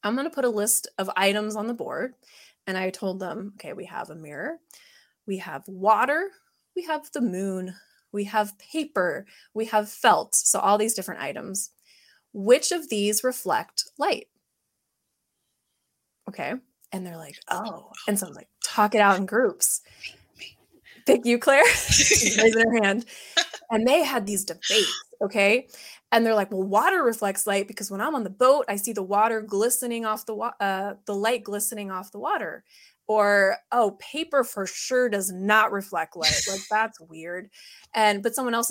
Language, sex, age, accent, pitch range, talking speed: English, female, 20-39, American, 200-255 Hz, 170 wpm